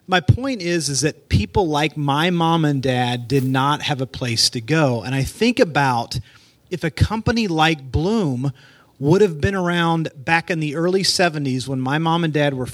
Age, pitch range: 30-49, 135-165 Hz